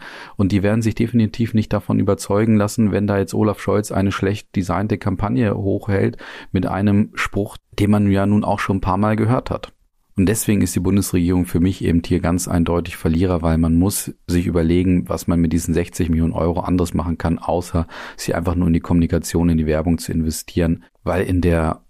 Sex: male